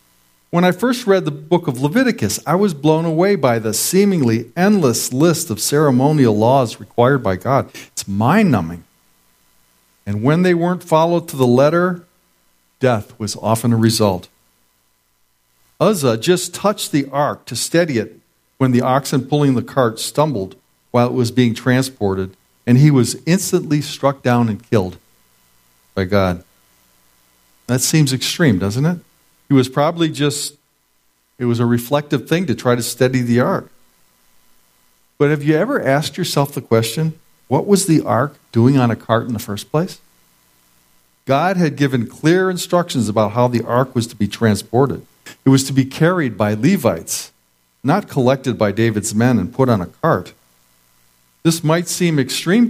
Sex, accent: male, American